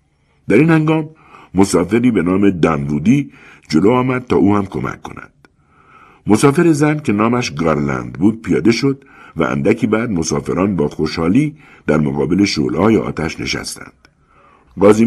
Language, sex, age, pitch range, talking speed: Persian, male, 60-79, 80-130 Hz, 135 wpm